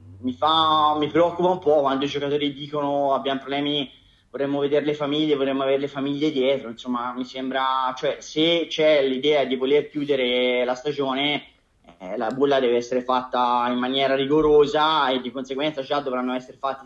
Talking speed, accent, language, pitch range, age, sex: 175 wpm, native, Italian, 135-160 Hz, 20-39, male